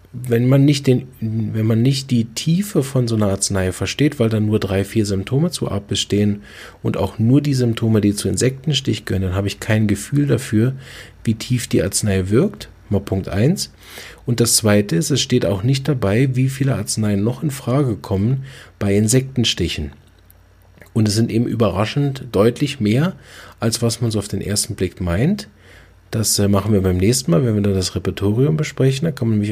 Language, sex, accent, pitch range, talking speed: German, male, German, 100-135 Hz, 195 wpm